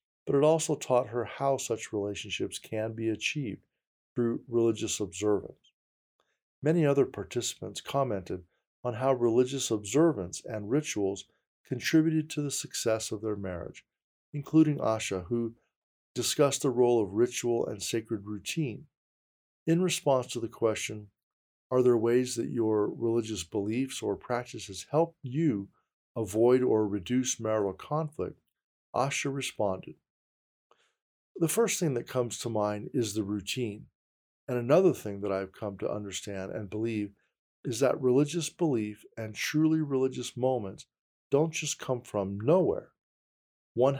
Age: 50-69